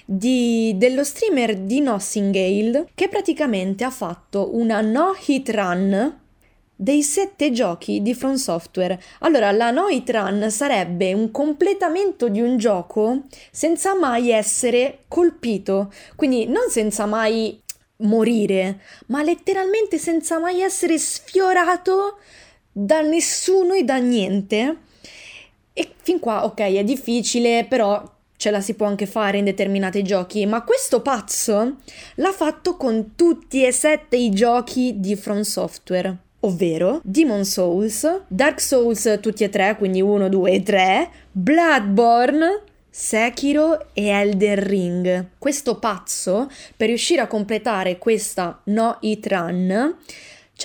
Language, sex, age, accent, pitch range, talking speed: Italian, female, 20-39, native, 200-285 Hz, 125 wpm